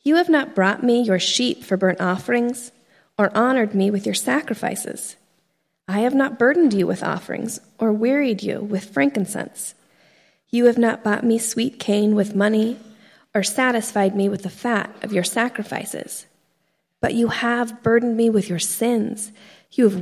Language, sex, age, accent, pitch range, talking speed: English, female, 40-59, American, 195-240 Hz, 170 wpm